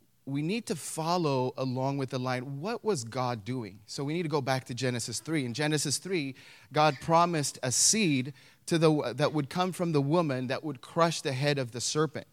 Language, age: English, 30-49